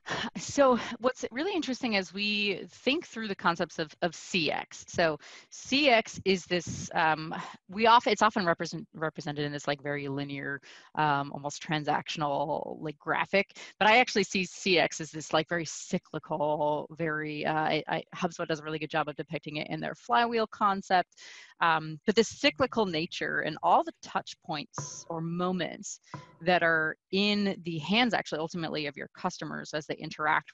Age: 30-49